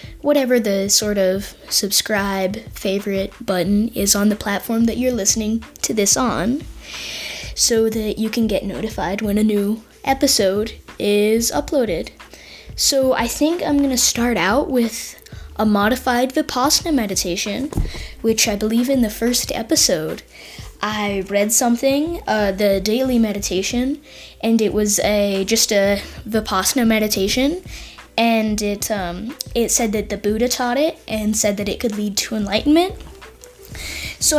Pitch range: 205-250 Hz